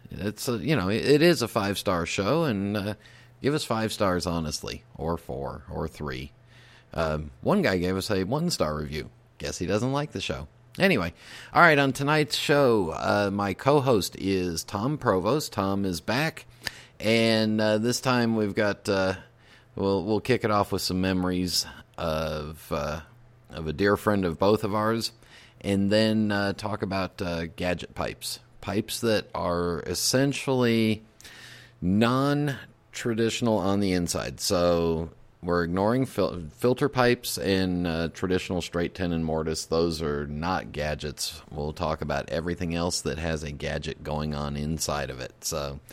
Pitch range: 85-120 Hz